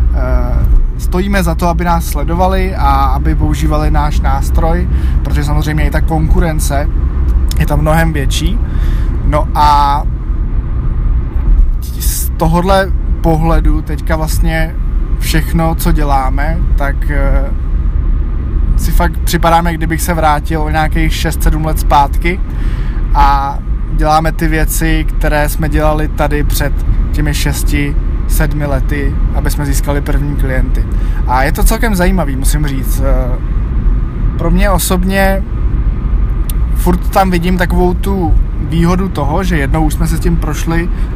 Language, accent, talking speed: Czech, native, 125 wpm